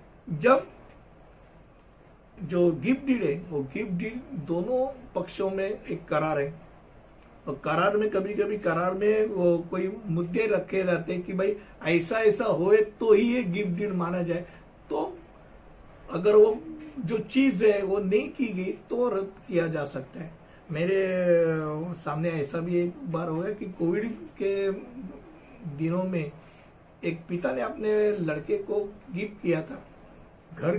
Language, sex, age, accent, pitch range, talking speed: Hindi, male, 60-79, native, 170-215 Hz, 150 wpm